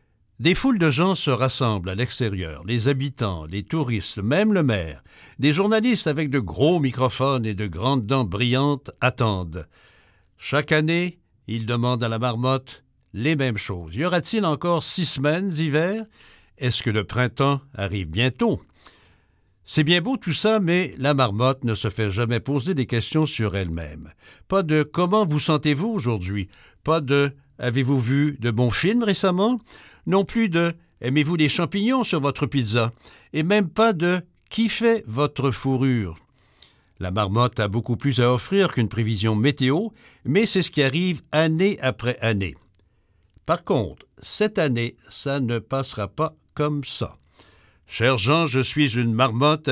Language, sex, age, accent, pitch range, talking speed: French, male, 60-79, French, 110-160 Hz, 160 wpm